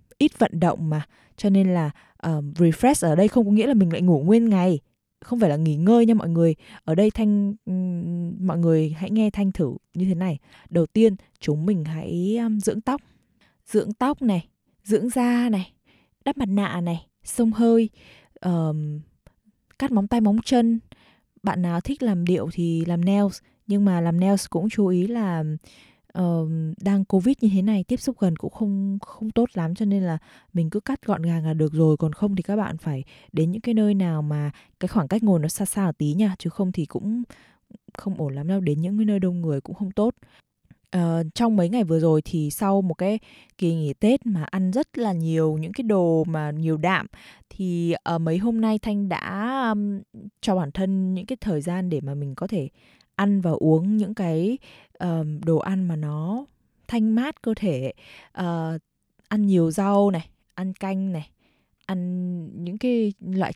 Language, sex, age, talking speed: Vietnamese, female, 20-39, 200 wpm